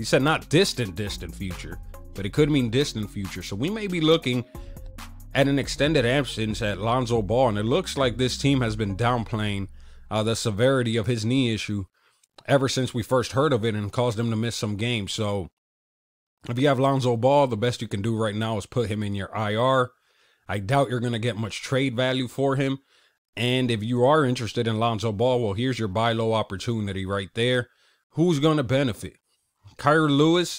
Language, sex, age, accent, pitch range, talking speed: English, male, 30-49, American, 105-130 Hz, 210 wpm